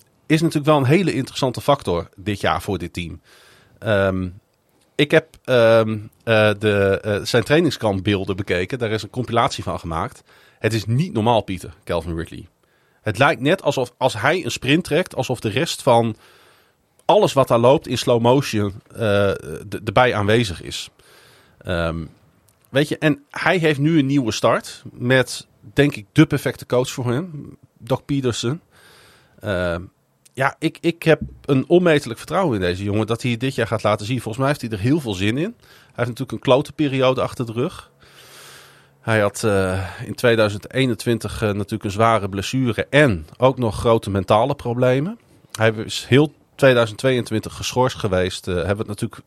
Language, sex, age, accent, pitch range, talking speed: Dutch, male, 40-59, Dutch, 105-135 Hz, 175 wpm